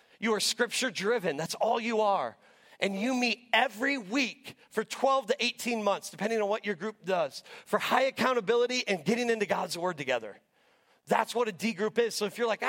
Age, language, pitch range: 40-59, English, 185-230 Hz